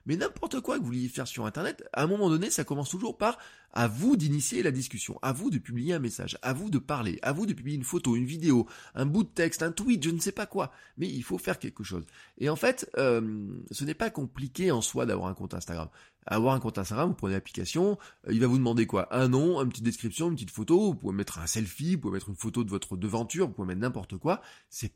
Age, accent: 20-39, French